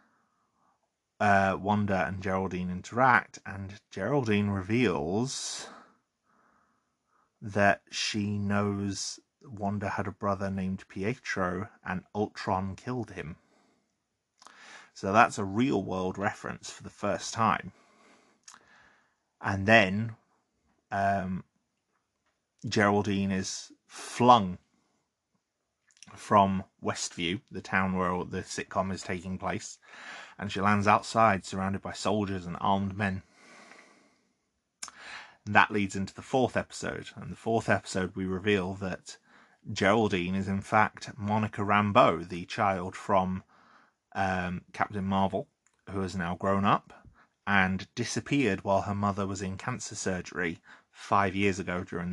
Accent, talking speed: British, 115 wpm